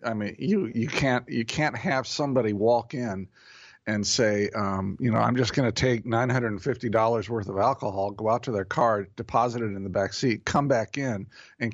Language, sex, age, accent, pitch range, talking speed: English, male, 50-69, American, 105-130 Hz, 210 wpm